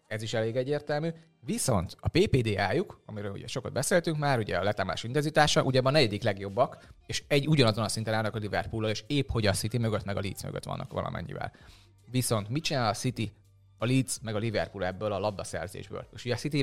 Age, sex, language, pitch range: 30-49, male, Hungarian, 100-125 Hz